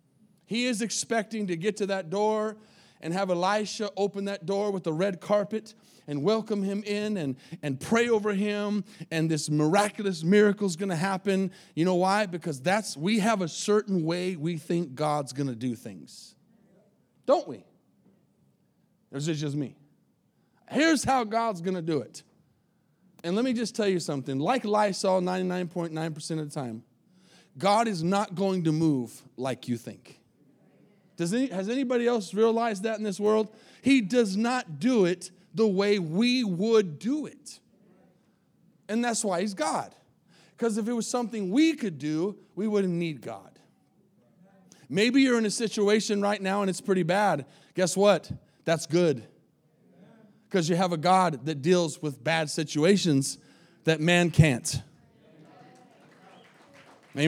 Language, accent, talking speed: English, American, 160 wpm